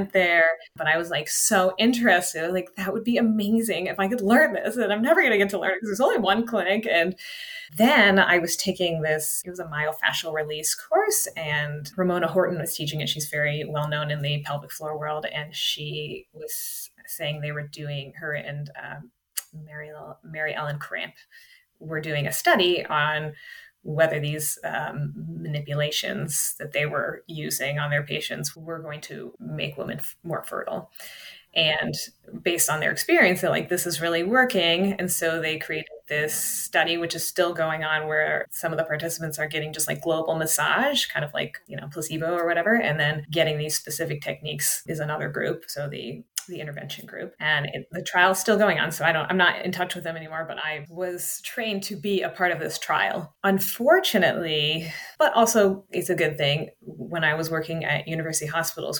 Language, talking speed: English, 195 wpm